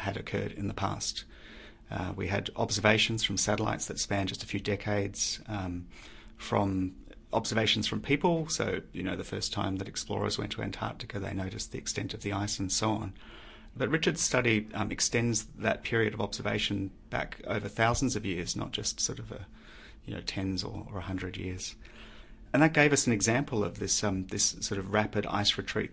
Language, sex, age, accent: English, male, 30-49, Australian